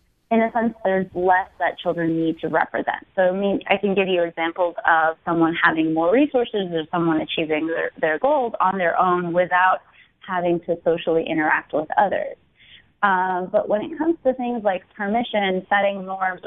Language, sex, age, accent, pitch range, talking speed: English, female, 20-39, American, 170-225 Hz, 180 wpm